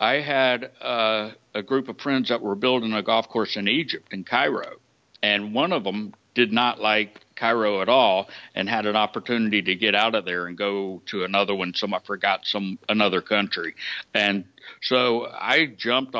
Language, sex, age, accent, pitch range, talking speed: English, male, 60-79, American, 105-125 Hz, 190 wpm